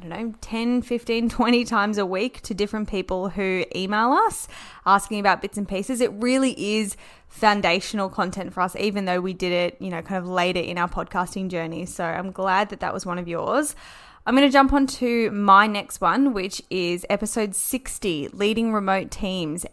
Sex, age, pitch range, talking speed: female, 10-29, 185-240 Hz, 200 wpm